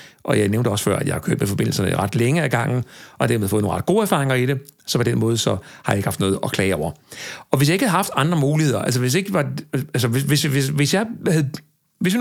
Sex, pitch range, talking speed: male, 105-150 Hz, 235 wpm